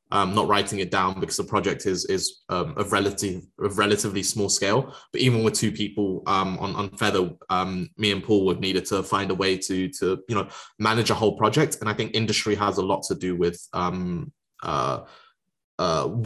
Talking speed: 210 wpm